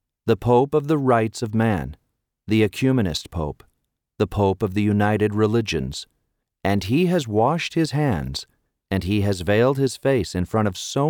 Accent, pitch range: American, 90-125 Hz